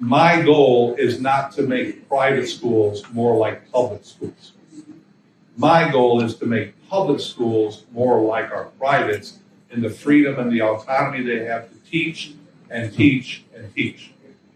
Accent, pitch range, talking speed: American, 115-150 Hz, 155 wpm